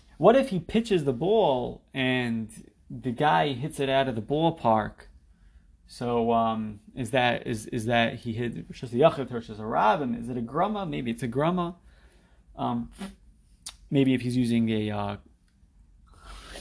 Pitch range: 110-140 Hz